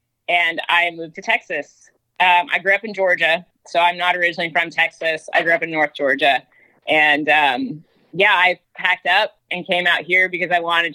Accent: American